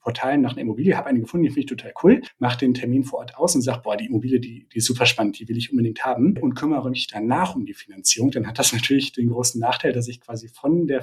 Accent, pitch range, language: German, 120-145 Hz, German